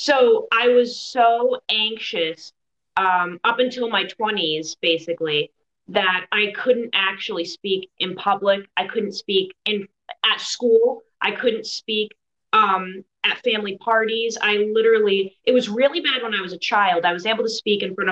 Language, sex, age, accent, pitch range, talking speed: English, female, 20-39, American, 185-240 Hz, 160 wpm